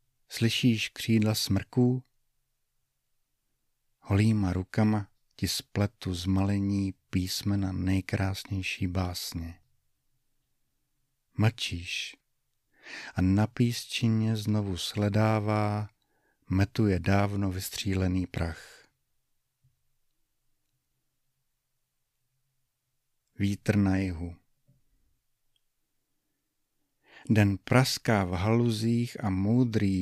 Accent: native